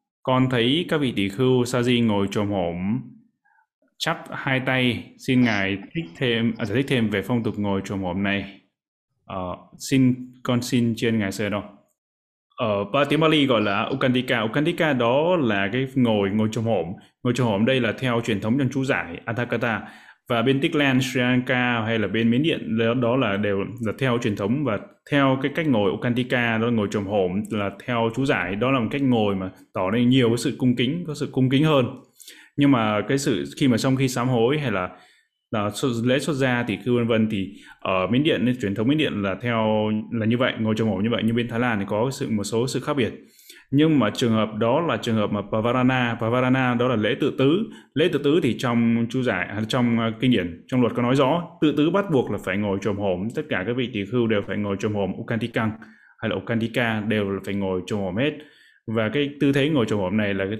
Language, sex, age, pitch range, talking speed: Vietnamese, male, 20-39, 105-130 Hz, 230 wpm